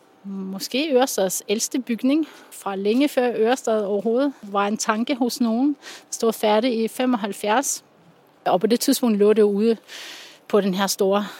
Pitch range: 205-245 Hz